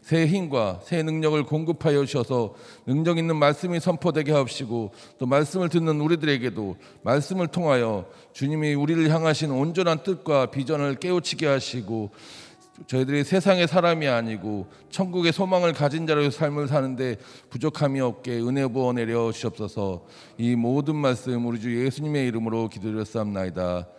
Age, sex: 40-59, male